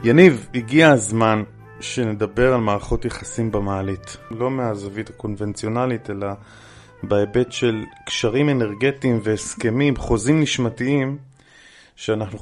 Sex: male